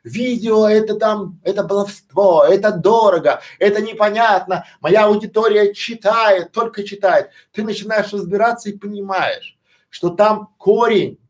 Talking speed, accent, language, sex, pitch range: 115 wpm, native, Russian, male, 160-205 Hz